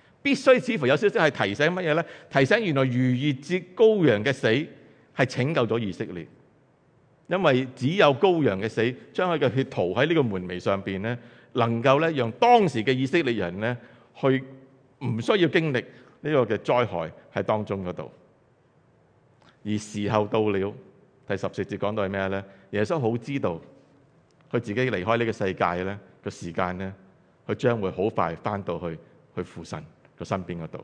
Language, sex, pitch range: English, male, 95-135 Hz